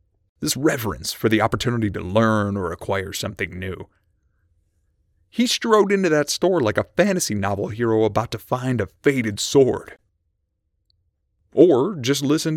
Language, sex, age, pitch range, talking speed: English, male, 30-49, 85-135 Hz, 145 wpm